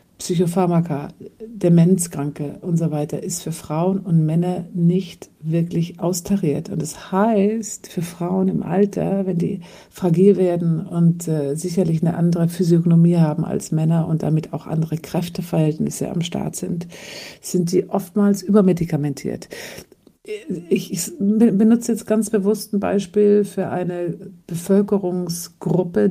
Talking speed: 125 wpm